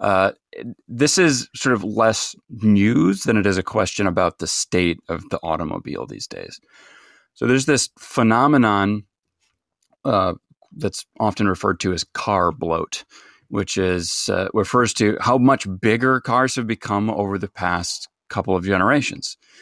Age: 30-49